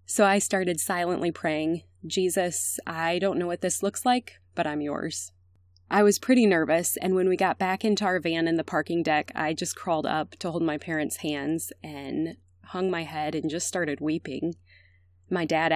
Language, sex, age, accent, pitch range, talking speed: English, female, 20-39, American, 150-185 Hz, 195 wpm